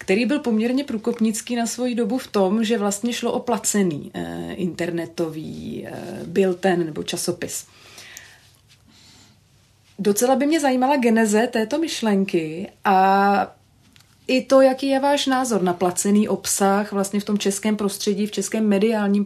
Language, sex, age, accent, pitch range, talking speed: Czech, female, 30-49, native, 180-225 Hz, 135 wpm